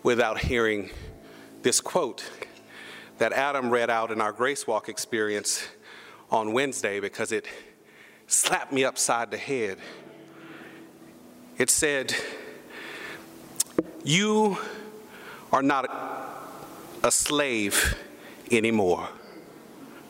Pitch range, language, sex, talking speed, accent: 145-230 Hz, English, male, 90 wpm, American